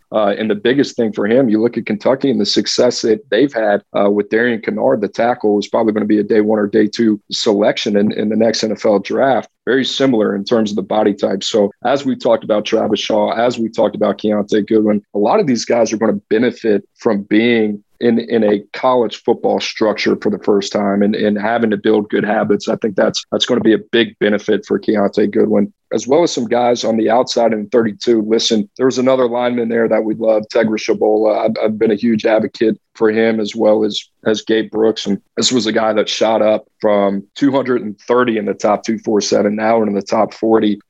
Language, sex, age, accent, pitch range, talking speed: English, male, 40-59, American, 105-115 Hz, 230 wpm